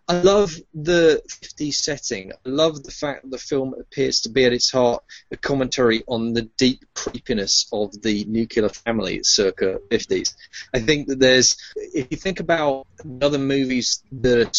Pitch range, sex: 115-145 Hz, male